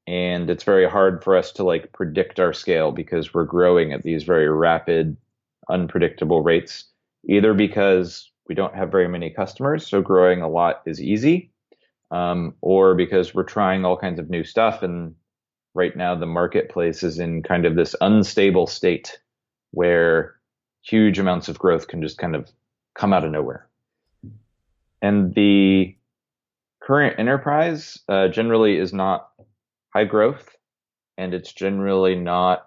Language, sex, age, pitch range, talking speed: English, male, 30-49, 90-110 Hz, 150 wpm